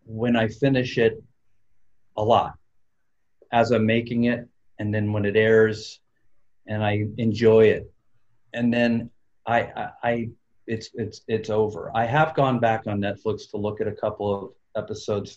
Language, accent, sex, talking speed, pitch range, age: English, American, male, 160 wpm, 105-130 Hz, 40-59